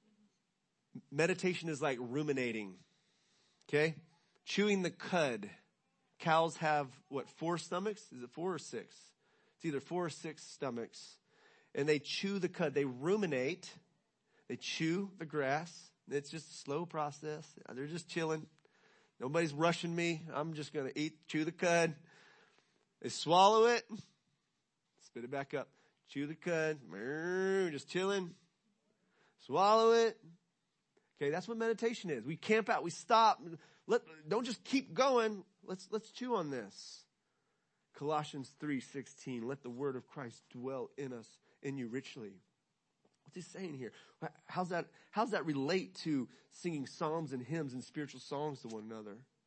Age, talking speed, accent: 30-49, 150 wpm, American